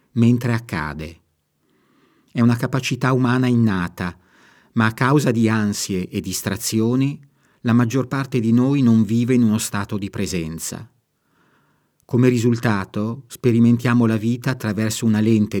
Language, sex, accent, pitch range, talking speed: Italian, male, native, 100-120 Hz, 130 wpm